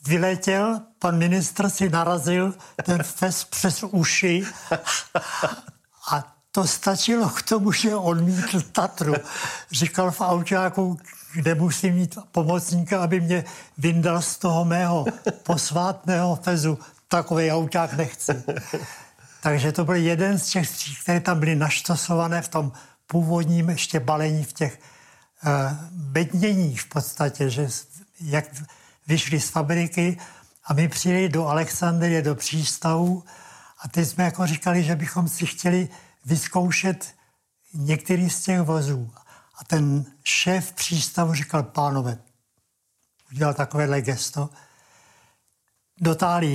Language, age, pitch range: Czech, 60-79, 155-180 Hz